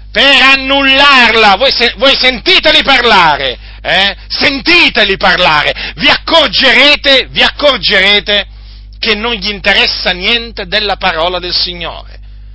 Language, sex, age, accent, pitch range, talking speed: Italian, male, 40-59, native, 190-260 Hz, 105 wpm